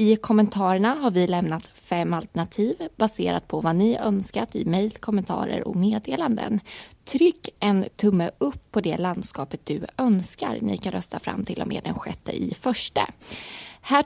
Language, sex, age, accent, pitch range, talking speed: Swedish, female, 20-39, native, 180-230 Hz, 160 wpm